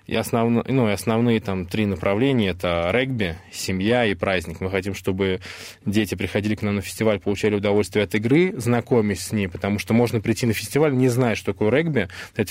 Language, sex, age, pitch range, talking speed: Russian, male, 20-39, 100-120 Hz, 195 wpm